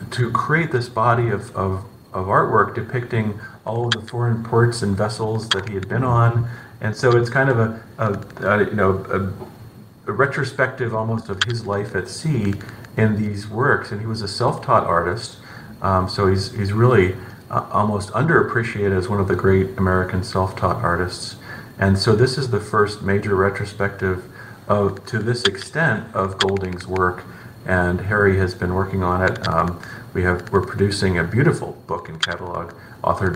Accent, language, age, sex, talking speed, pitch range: American, English, 40-59, male, 175 wpm, 90-115 Hz